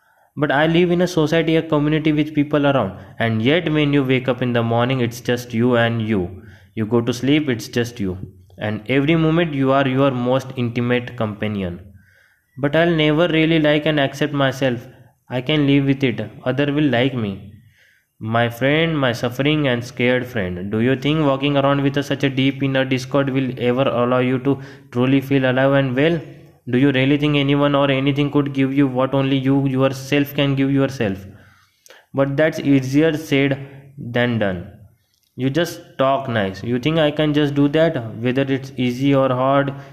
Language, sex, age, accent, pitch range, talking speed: Hindi, male, 20-39, native, 120-145 Hz, 190 wpm